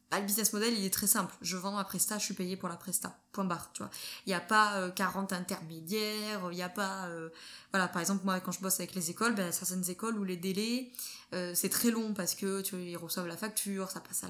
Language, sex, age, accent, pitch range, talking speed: French, female, 20-39, French, 180-215 Hz, 260 wpm